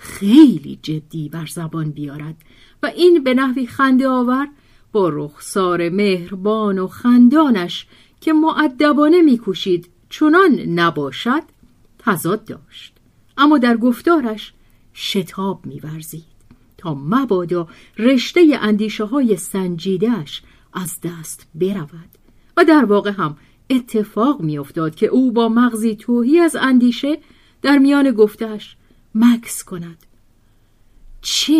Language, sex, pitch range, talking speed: Persian, female, 170-270 Hz, 105 wpm